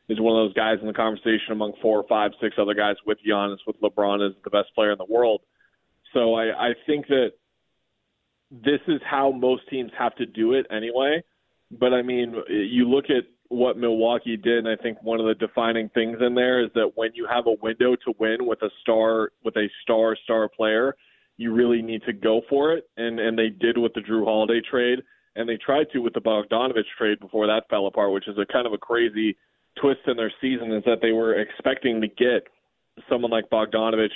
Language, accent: English, American